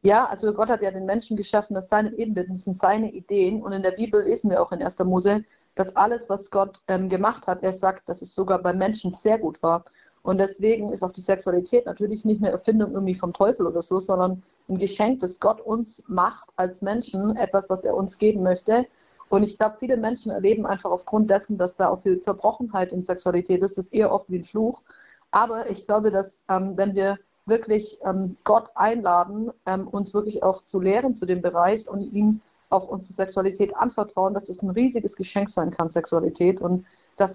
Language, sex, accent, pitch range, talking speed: German, female, German, 185-215 Hz, 210 wpm